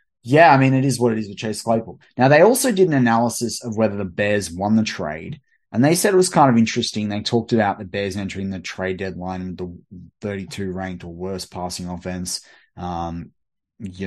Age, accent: 20-39, Australian